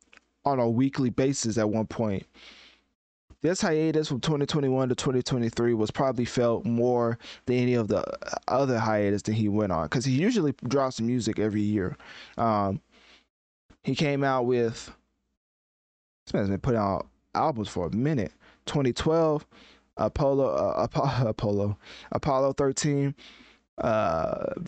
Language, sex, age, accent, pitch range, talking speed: English, male, 20-39, American, 110-135 Hz, 135 wpm